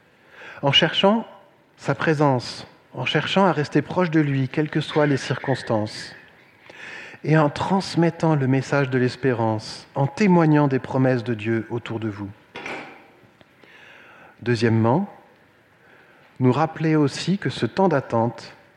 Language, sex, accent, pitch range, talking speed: French, male, French, 120-155 Hz, 130 wpm